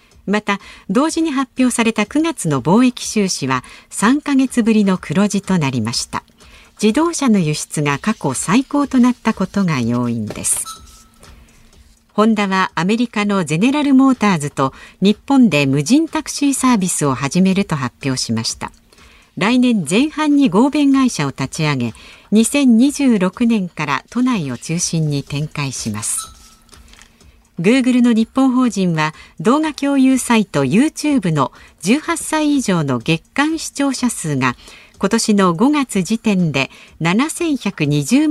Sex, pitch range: female, 155-255 Hz